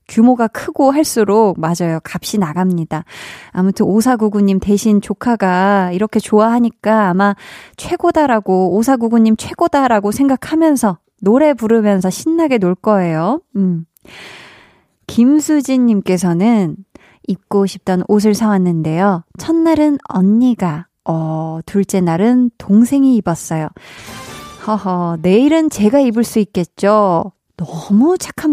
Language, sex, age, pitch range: Korean, female, 20-39, 185-255 Hz